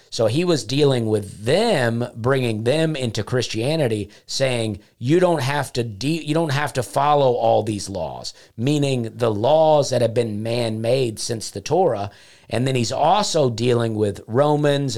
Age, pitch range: 40-59, 110-145 Hz